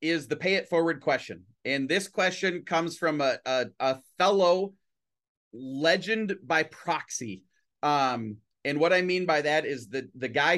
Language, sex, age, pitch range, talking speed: English, male, 30-49, 125-160 Hz, 160 wpm